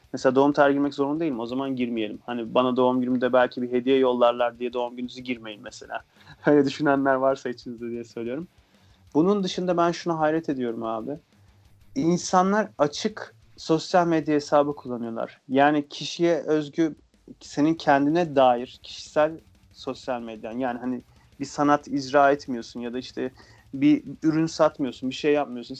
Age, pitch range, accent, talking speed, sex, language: 30-49, 125-165 Hz, native, 155 wpm, male, Turkish